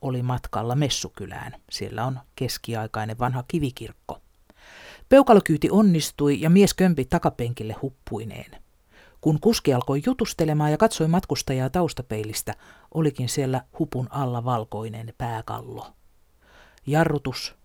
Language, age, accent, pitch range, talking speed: Finnish, 50-69, native, 115-155 Hz, 100 wpm